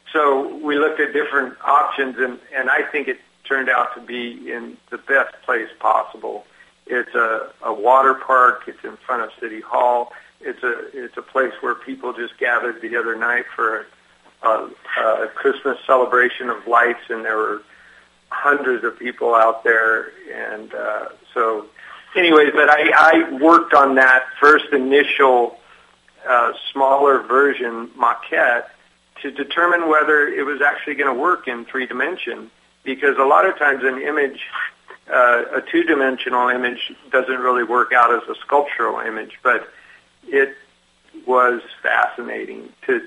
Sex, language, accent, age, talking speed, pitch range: male, English, American, 50-69, 155 wpm, 120-165 Hz